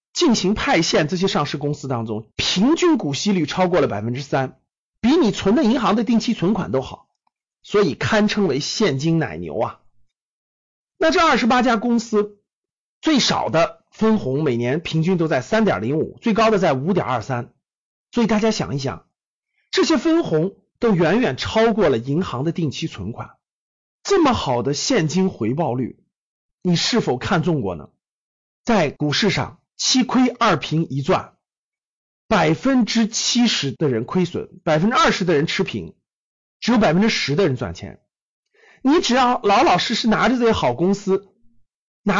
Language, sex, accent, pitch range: Chinese, male, native, 155-225 Hz